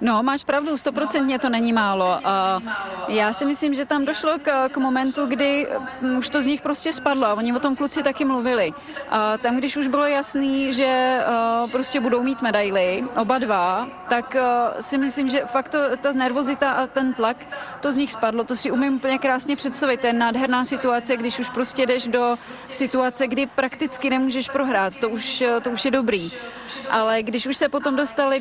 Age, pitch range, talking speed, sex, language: 30-49, 235-270 Hz, 185 wpm, female, Czech